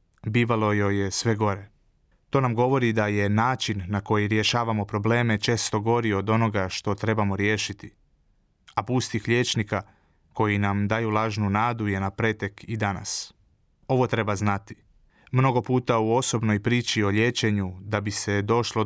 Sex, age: male, 30-49